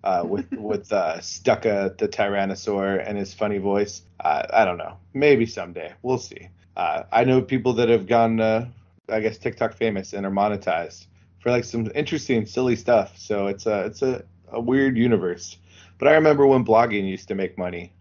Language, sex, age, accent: English, male, 20-39, American